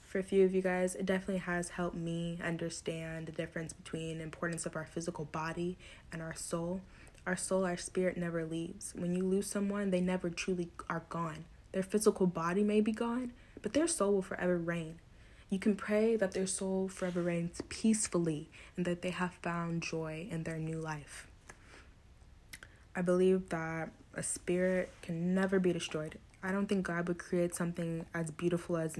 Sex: female